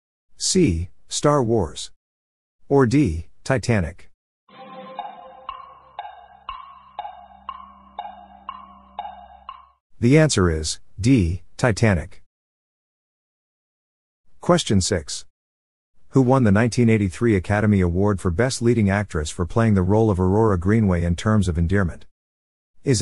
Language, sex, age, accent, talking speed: English, male, 50-69, American, 90 wpm